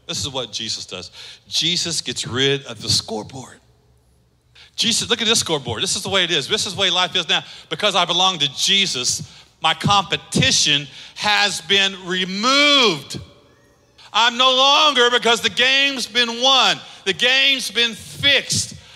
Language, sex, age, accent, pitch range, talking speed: English, male, 40-59, American, 195-250 Hz, 160 wpm